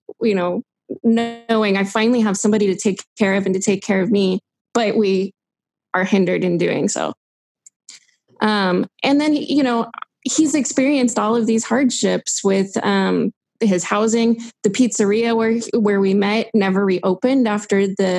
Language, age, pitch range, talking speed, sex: English, 20-39, 200-235 Hz, 160 wpm, female